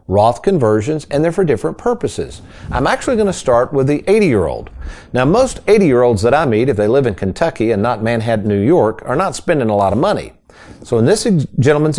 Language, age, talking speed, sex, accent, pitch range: English, 50-69, 235 wpm, male, American, 105-155 Hz